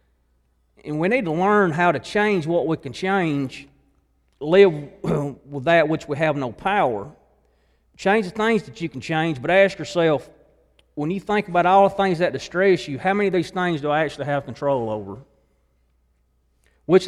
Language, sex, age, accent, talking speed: English, male, 40-59, American, 185 wpm